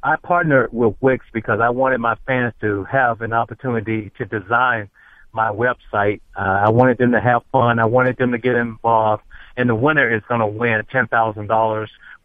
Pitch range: 110-130 Hz